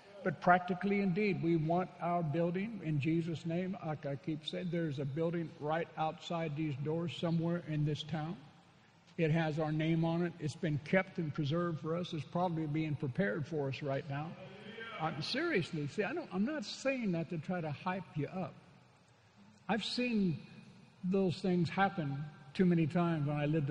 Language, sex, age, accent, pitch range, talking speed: English, male, 60-79, American, 150-180 Hz, 175 wpm